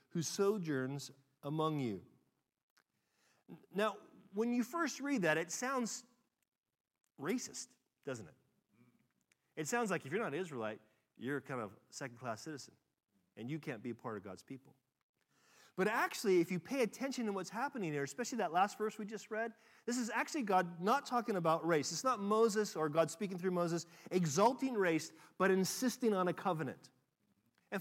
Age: 40-59